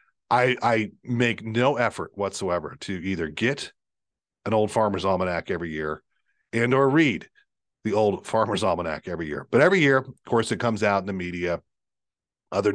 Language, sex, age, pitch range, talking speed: English, male, 40-59, 100-125 Hz, 170 wpm